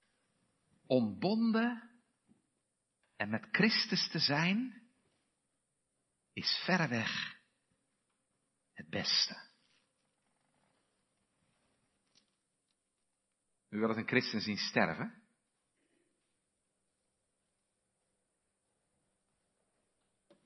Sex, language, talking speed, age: male, Dutch, 50 wpm, 50-69